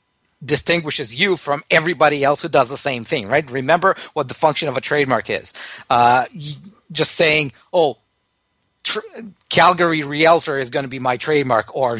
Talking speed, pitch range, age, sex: 165 wpm, 135-165 Hz, 40-59, male